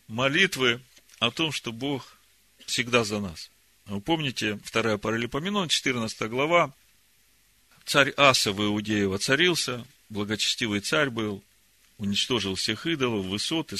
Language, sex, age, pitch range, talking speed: Russian, male, 40-59, 105-145 Hz, 115 wpm